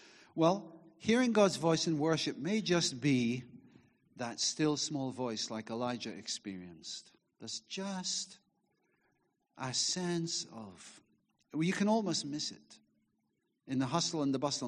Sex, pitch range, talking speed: male, 145-195 Hz, 135 wpm